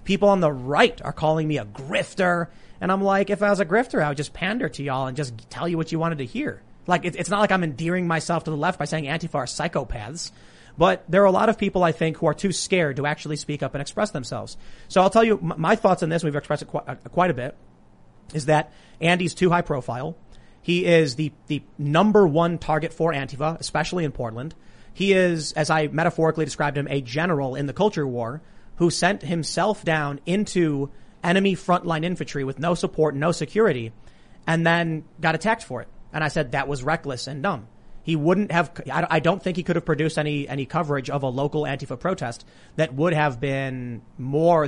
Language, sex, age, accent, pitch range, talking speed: English, male, 30-49, American, 145-175 Hz, 220 wpm